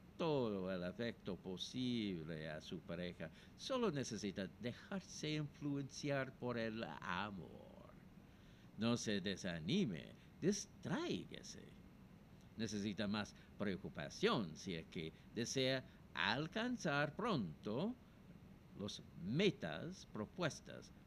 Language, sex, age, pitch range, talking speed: Spanish, male, 60-79, 105-155 Hz, 85 wpm